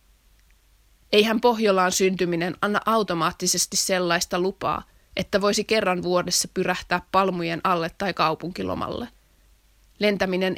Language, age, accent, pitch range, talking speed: Finnish, 20-39, native, 165-200 Hz, 95 wpm